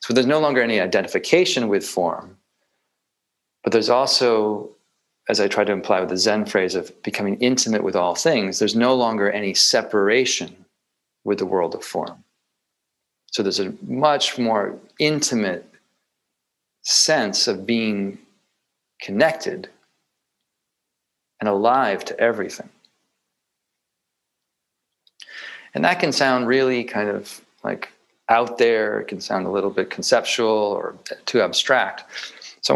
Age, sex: 40-59, male